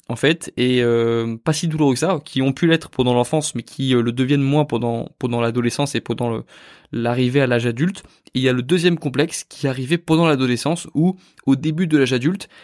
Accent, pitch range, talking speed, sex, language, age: French, 125-155 Hz, 235 wpm, male, French, 20-39